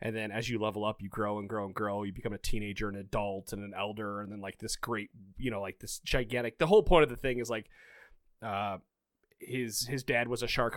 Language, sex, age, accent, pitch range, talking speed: English, male, 30-49, American, 105-140 Hz, 255 wpm